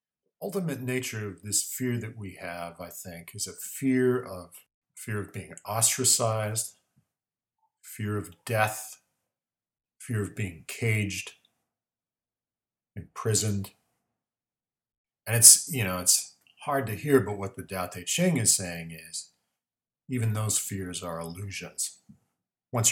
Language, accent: English, American